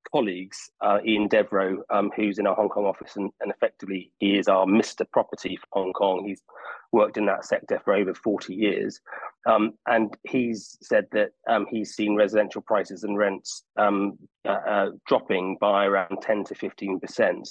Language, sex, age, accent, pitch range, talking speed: English, male, 30-49, British, 100-105 Hz, 180 wpm